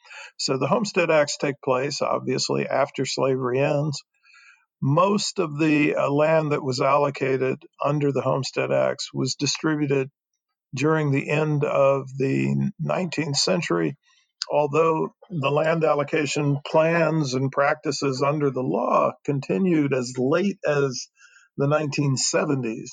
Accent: American